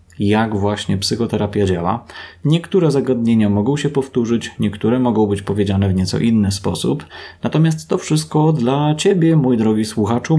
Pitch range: 105-135 Hz